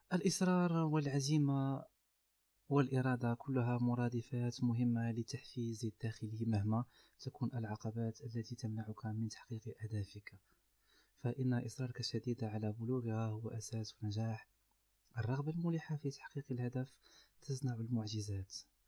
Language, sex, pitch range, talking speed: Arabic, male, 110-130 Hz, 100 wpm